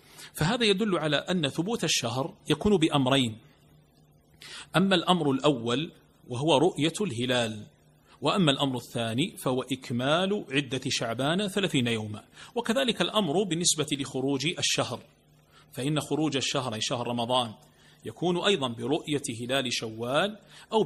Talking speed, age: 115 wpm, 40-59